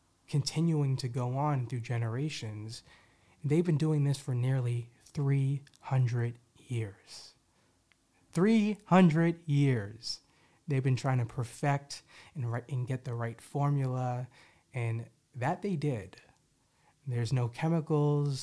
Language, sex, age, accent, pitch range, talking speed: English, male, 30-49, American, 115-140 Hz, 110 wpm